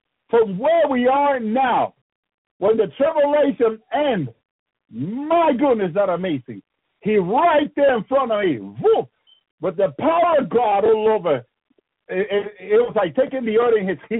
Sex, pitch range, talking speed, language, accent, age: male, 185-260 Hz, 160 wpm, English, American, 60-79